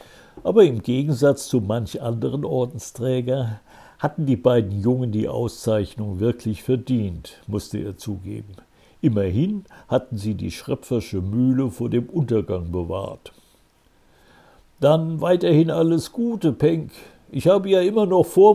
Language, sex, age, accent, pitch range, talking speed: German, male, 60-79, German, 105-155 Hz, 125 wpm